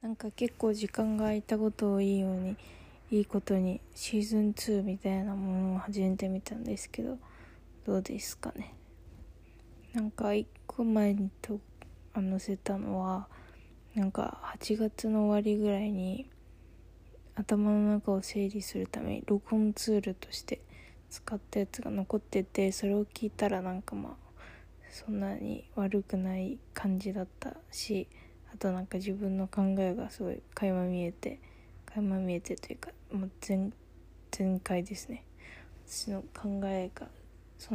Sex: female